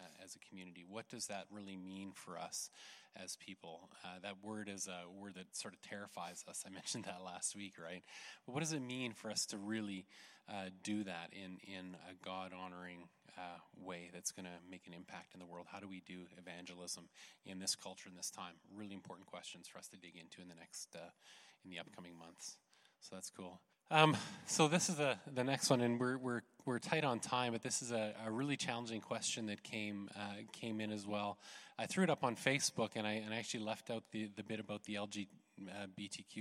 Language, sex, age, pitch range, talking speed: English, male, 20-39, 95-115 Hz, 220 wpm